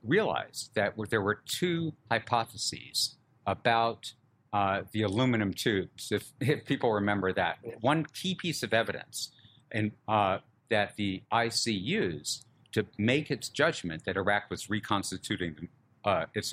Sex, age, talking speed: male, 60-79, 135 wpm